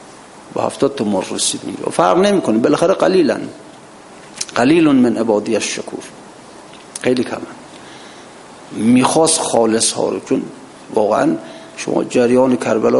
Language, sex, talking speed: Persian, male, 115 wpm